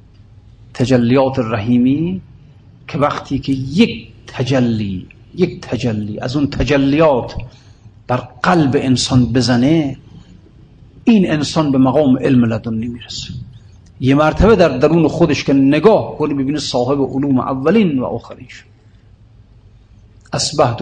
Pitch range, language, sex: 115-150 Hz, Persian, male